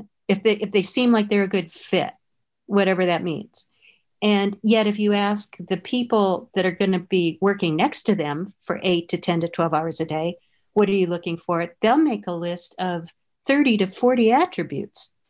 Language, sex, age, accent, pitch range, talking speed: English, female, 50-69, American, 180-220 Hz, 205 wpm